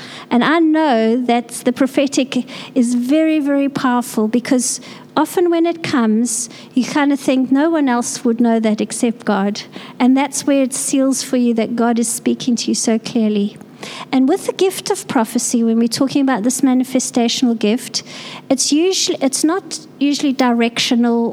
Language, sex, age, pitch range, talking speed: English, female, 50-69, 230-295 Hz, 170 wpm